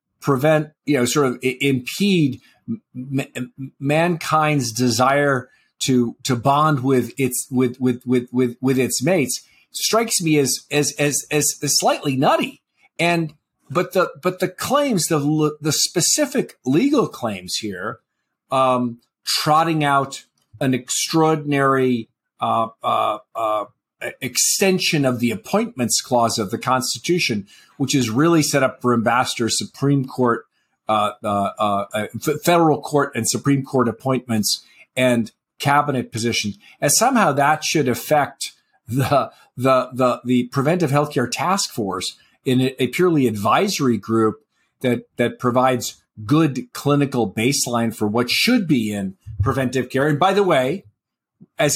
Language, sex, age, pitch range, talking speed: English, male, 40-59, 120-150 Hz, 135 wpm